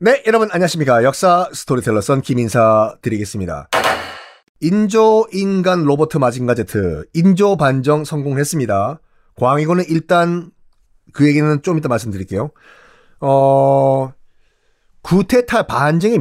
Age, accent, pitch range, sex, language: 40-59, native, 110-180 Hz, male, Korean